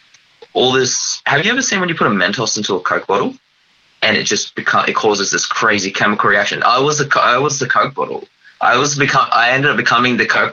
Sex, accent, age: male, Australian, 20-39